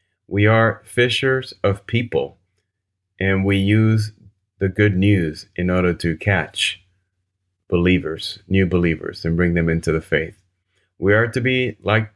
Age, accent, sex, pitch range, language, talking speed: 30-49, American, male, 90-105 Hz, English, 145 wpm